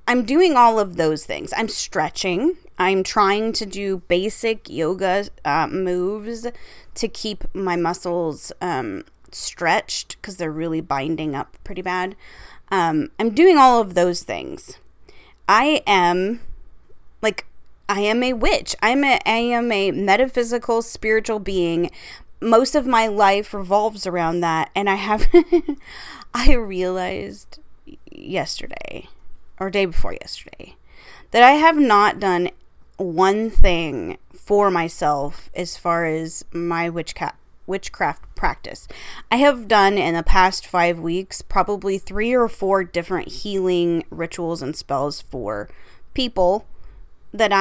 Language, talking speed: English, 130 wpm